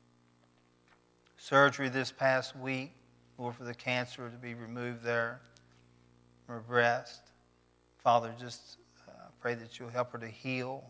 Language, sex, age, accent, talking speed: English, male, 40-59, American, 125 wpm